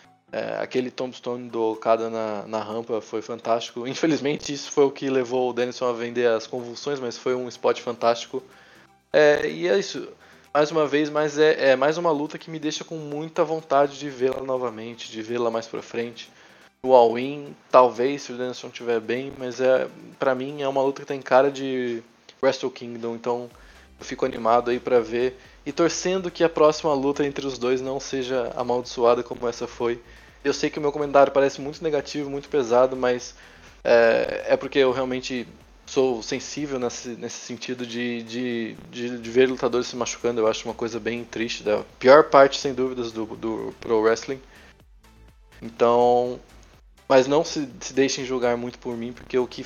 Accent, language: Brazilian, Portuguese